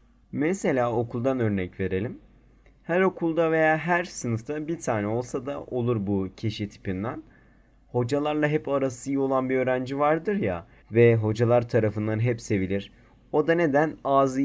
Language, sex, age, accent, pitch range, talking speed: Turkish, male, 30-49, native, 110-145 Hz, 145 wpm